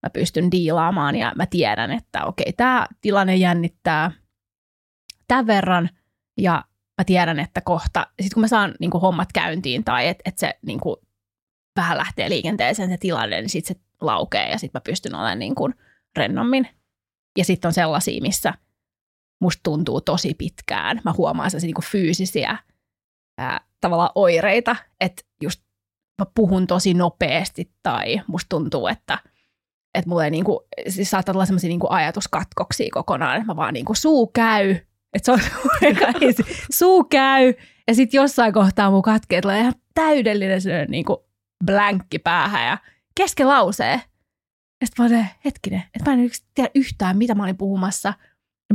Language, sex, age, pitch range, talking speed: Finnish, female, 20-39, 175-225 Hz, 150 wpm